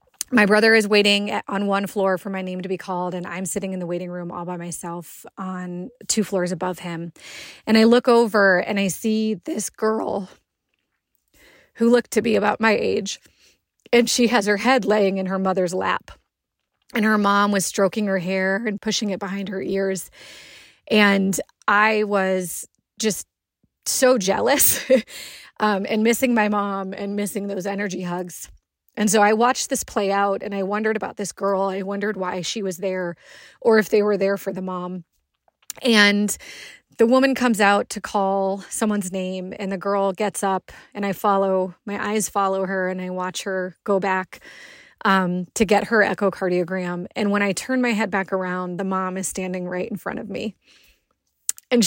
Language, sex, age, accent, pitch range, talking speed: English, female, 30-49, American, 190-220 Hz, 185 wpm